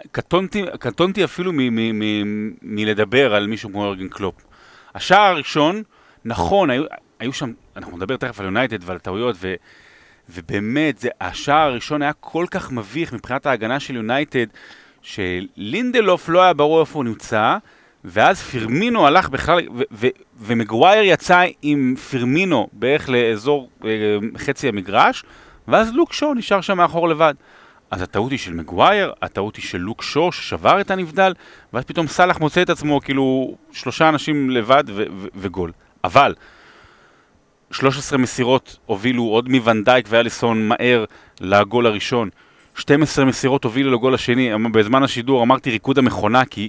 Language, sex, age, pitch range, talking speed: Hebrew, male, 30-49, 105-140 Hz, 145 wpm